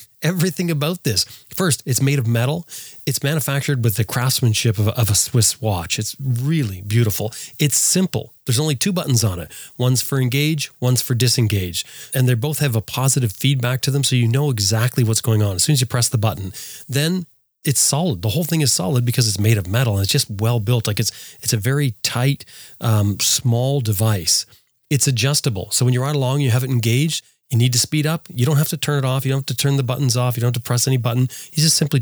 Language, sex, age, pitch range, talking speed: English, male, 30-49, 110-140 Hz, 240 wpm